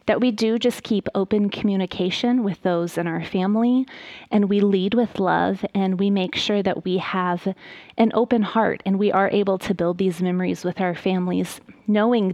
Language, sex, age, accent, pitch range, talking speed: English, female, 20-39, American, 185-225 Hz, 190 wpm